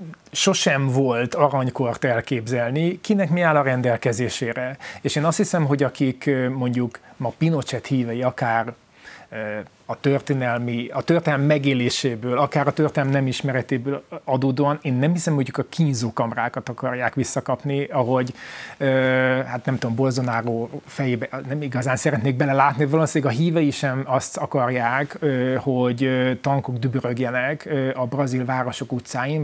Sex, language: male, Hungarian